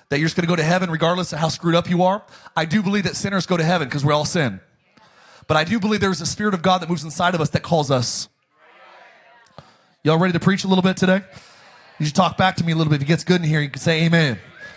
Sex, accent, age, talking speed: male, American, 30-49, 290 wpm